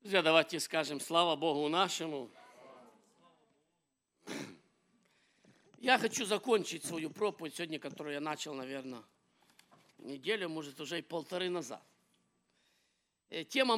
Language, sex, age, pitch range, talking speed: English, male, 50-69, 180-245 Hz, 100 wpm